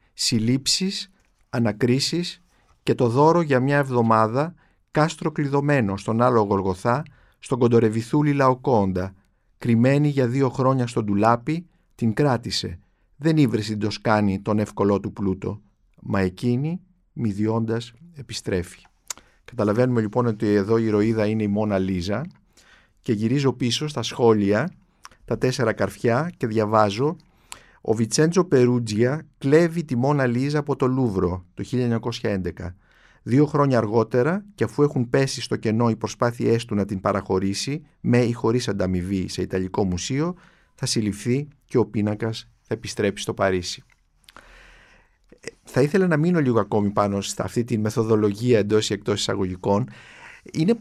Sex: male